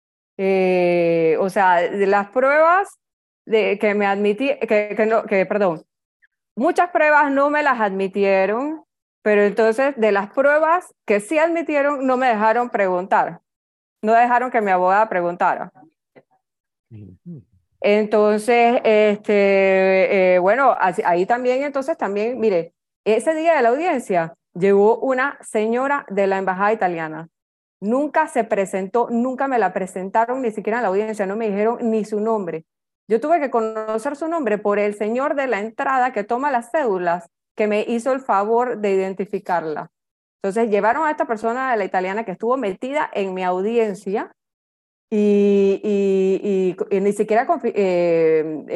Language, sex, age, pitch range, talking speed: Spanish, female, 30-49, 195-255 Hz, 155 wpm